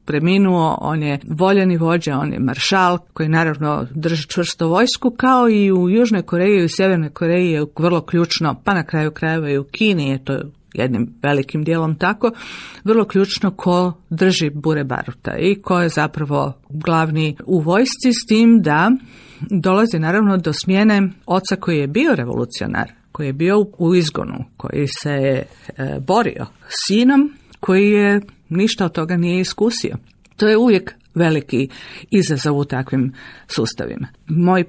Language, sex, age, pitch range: Croatian, female, 50-69, 150-195 Hz